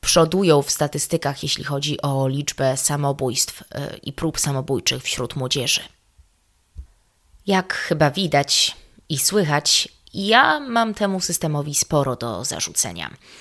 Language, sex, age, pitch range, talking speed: Polish, female, 20-39, 135-160 Hz, 110 wpm